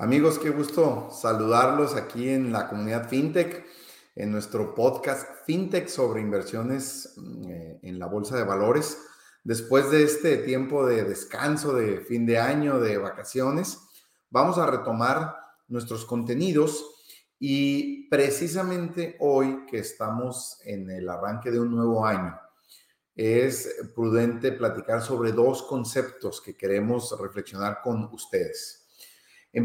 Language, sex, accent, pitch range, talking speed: Spanish, male, Mexican, 110-140 Hz, 125 wpm